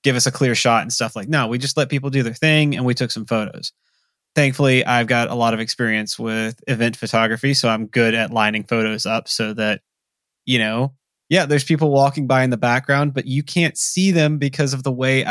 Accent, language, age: American, English, 20-39